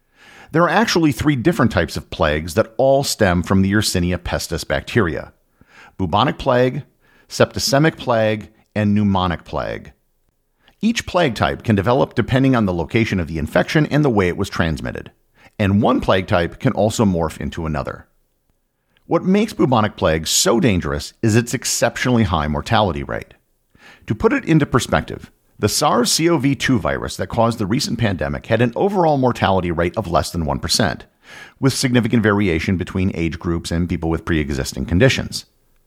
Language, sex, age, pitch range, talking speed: English, male, 50-69, 85-125 Hz, 165 wpm